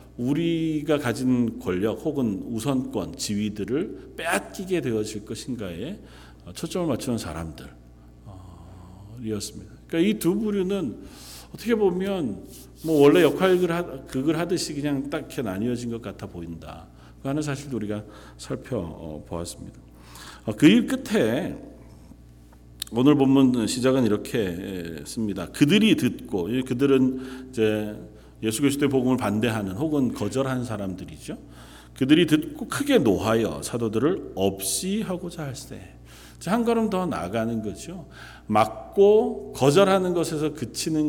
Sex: male